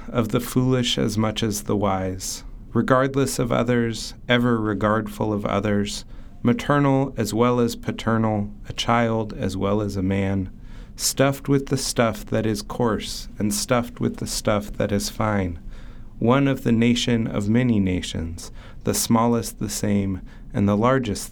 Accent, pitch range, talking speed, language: American, 105-125 Hz, 160 wpm, English